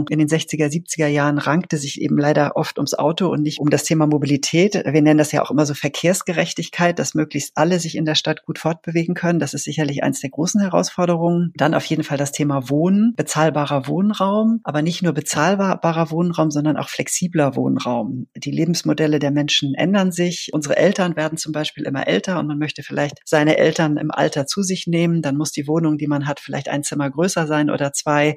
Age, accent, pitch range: 40-59, German, 145-170 Hz